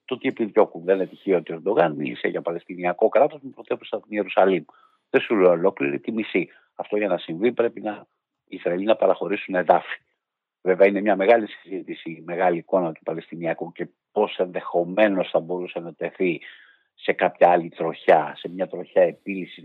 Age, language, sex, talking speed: 50-69, Greek, male, 175 wpm